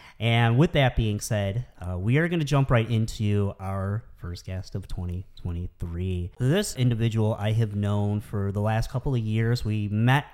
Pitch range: 110-135 Hz